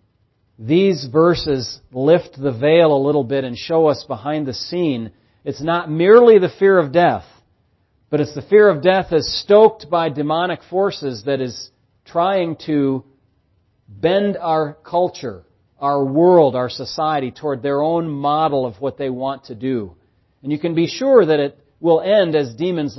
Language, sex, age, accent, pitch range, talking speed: English, male, 40-59, American, 120-160 Hz, 165 wpm